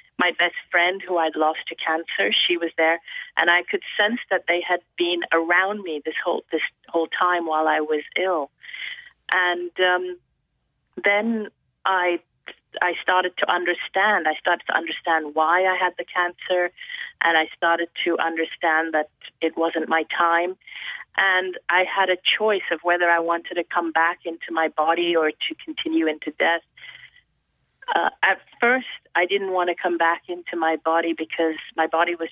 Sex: female